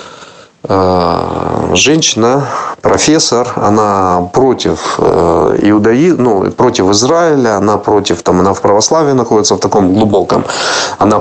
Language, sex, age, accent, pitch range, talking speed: Russian, male, 30-49, native, 100-145 Hz, 100 wpm